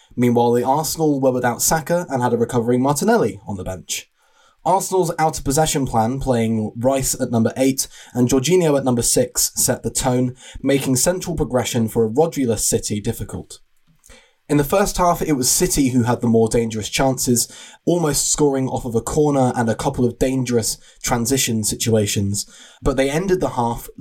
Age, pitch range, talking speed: 20-39, 115-150 Hz, 170 wpm